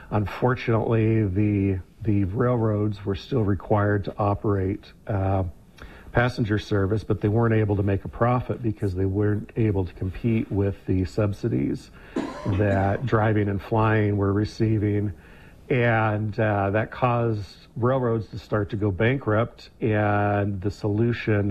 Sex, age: male, 50-69